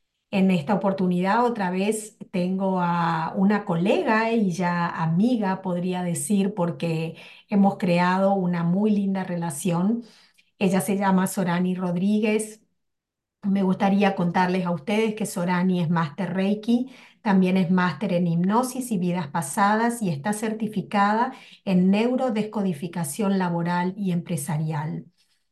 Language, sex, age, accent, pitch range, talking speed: English, female, 40-59, American, 180-220 Hz, 120 wpm